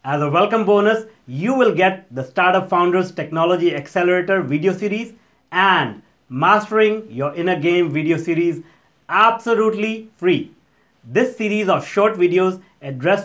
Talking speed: 130 wpm